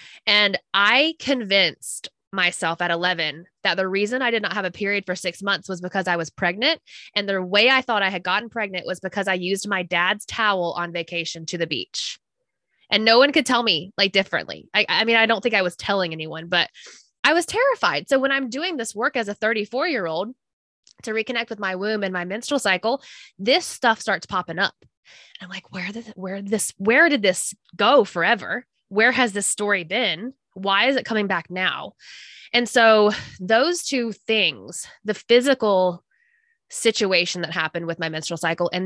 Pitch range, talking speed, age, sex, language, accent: 180-230 Hz, 200 wpm, 20-39, female, English, American